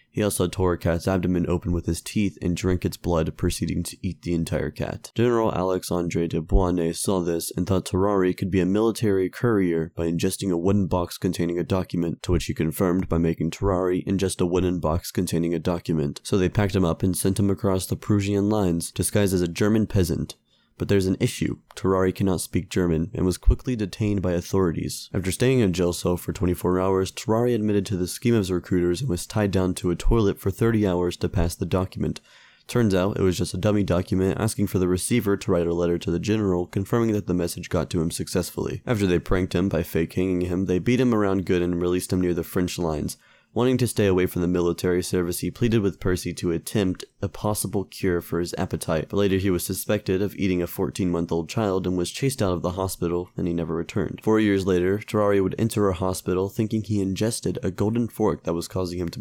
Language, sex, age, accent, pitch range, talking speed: English, male, 20-39, American, 85-100 Hz, 225 wpm